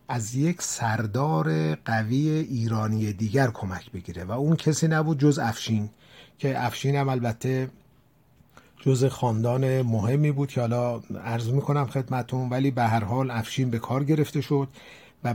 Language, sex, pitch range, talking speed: Persian, male, 105-135 Hz, 145 wpm